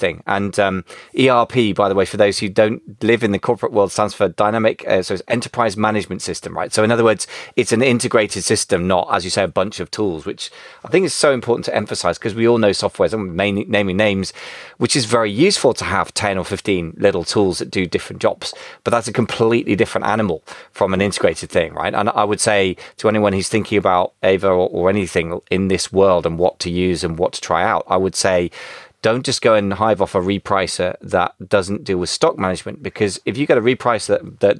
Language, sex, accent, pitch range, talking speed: English, male, British, 95-115 Hz, 235 wpm